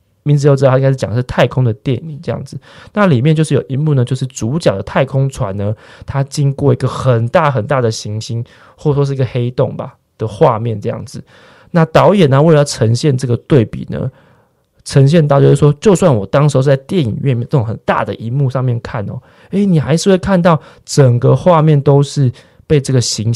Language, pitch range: Chinese, 120-150 Hz